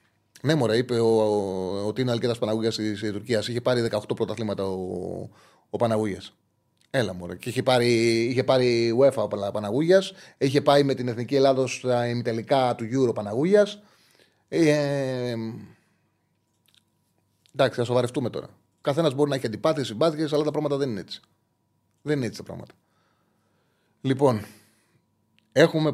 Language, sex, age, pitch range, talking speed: Greek, male, 30-49, 120-150 Hz, 140 wpm